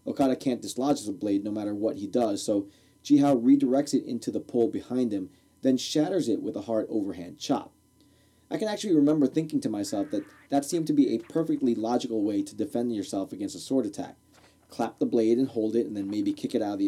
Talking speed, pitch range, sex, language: 230 wpm, 110-160 Hz, male, English